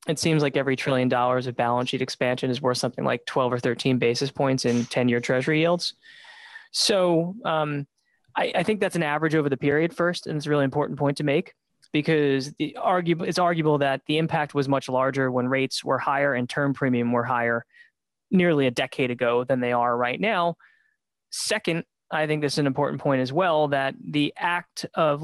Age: 20-39